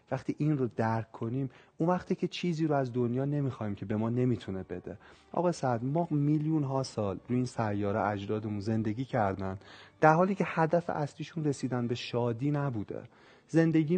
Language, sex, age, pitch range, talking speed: Persian, male, 40-59, 120-160 Hz, 170 wpm